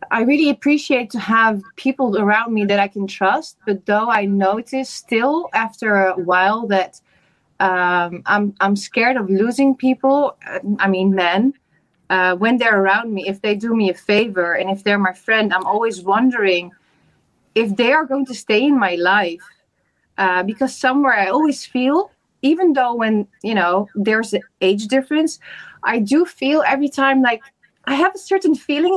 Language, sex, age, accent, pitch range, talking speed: English, female, 20-39, Dutch, 195-270 Hz, 175 wpm